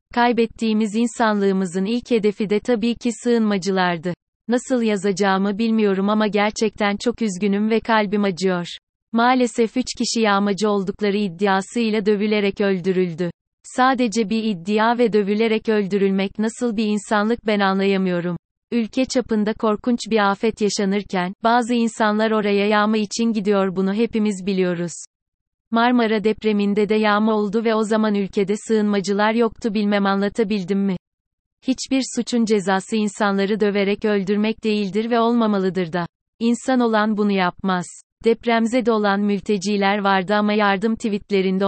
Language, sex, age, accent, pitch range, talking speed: Turkish, female, 30-49, native, 195-225 Hz, 125 wpm